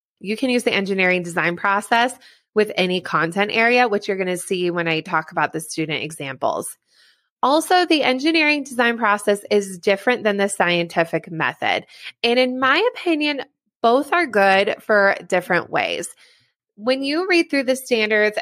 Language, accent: English, American